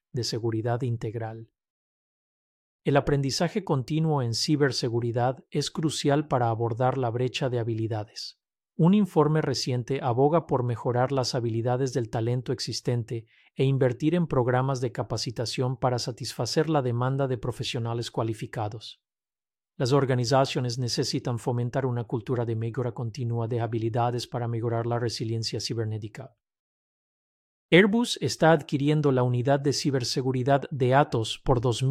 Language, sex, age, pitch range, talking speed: Spanish, male, 40-59, 120-140 Hz, 125 wpm